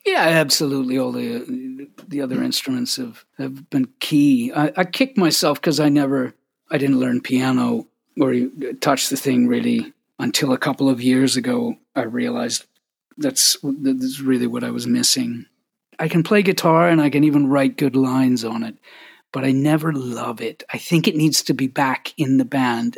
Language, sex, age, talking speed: English, male, 40-59, 185 wpm